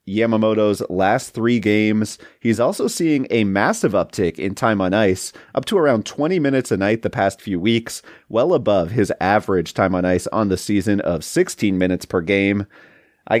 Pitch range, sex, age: 100-130 Hz, male, 30-49